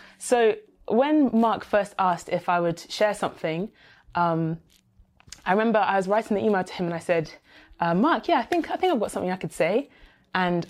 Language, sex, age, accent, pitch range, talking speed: English, female, 20-39, British, 170-215 Hz, 210 wpm